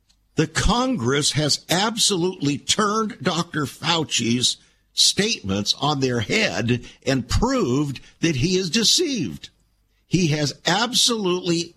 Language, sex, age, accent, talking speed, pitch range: English, male, 60-79, American, 100 wpm, 110-180 Hz